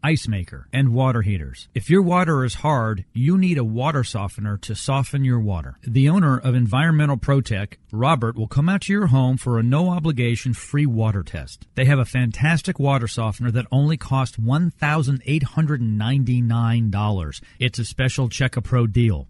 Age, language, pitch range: 40-59, English, 115-150 Hz